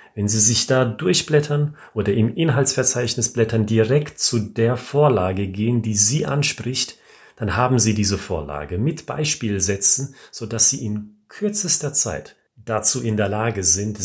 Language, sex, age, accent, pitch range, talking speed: German, male, 40-59, German, 95-120 Hz, 145 wpm